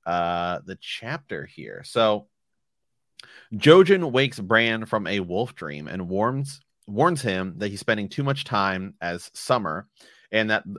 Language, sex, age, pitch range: English, male, 30-49, 100-125 Hz